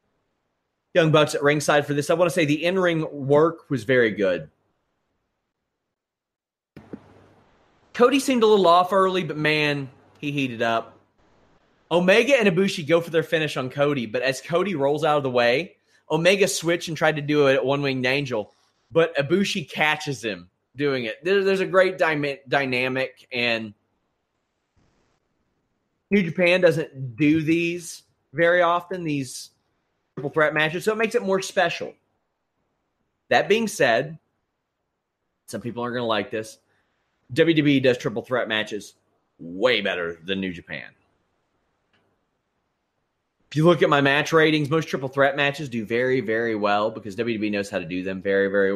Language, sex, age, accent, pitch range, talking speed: English, male, 30-49, American, 120-170 Hz, 155 wpm